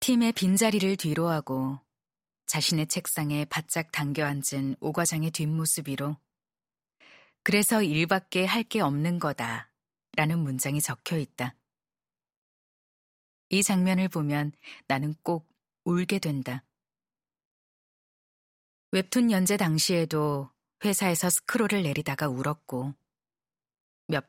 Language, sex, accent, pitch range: Korean, female, native, 145-180 Hz